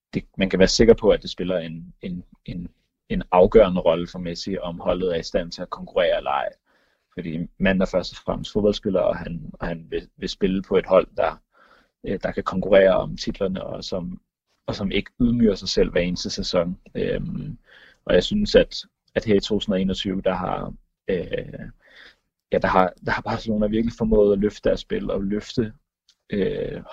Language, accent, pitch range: Danish, native, 90-120 Hz